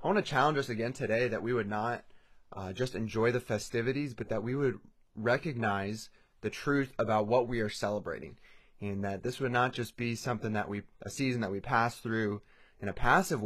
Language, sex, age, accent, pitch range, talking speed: English, male, 20-39, American, 105-130 Hz, 210 wpm